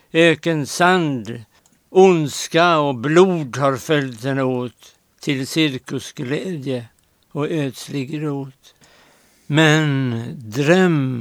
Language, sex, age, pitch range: Swedish, male, 60-79, 130-165 Hz